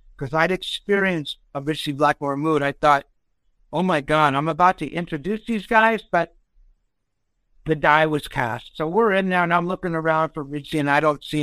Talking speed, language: 195 wpm, English